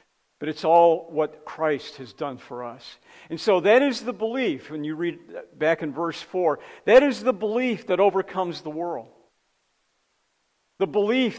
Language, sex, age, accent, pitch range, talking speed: English, male, 50-69, American, 145-180 Hz, 170 wpm